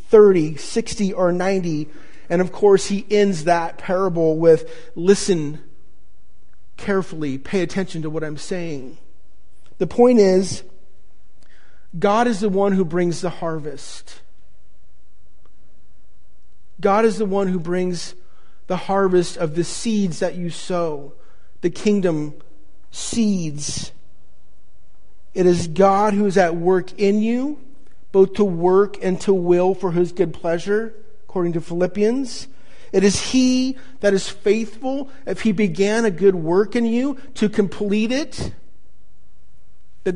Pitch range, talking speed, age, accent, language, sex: 155-200 Hz, 130 wpm, 40-59, American, English, male